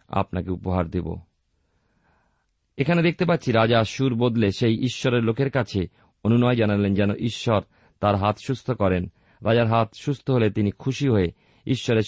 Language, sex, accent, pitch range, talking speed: Bengali, male, native, 95-115 Hz, 140 wpm